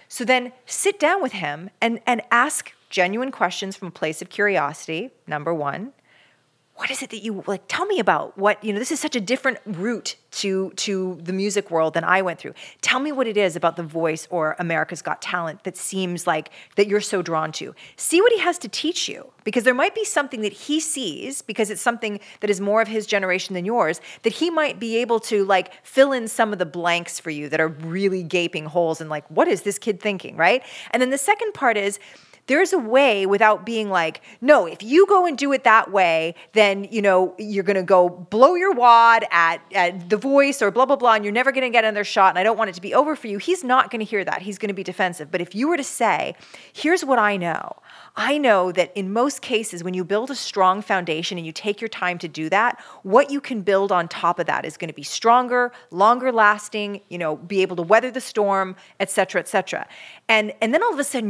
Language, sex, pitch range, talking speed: English, female, 185-245 Hz, 245 wpm